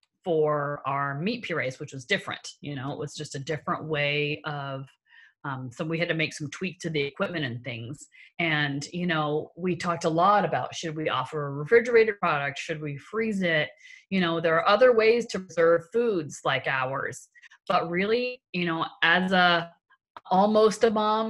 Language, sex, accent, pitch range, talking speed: English, female, American, 155-210 Hz, 190 wpm